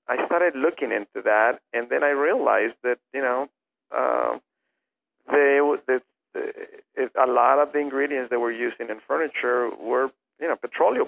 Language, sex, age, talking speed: English, male, 50-69, 175 wpm